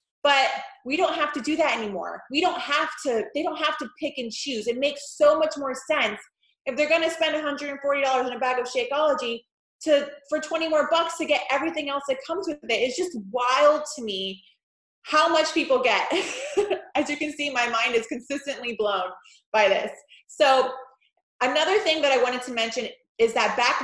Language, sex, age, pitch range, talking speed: English, female, 20-39, 235-300 Hz, 200 wpm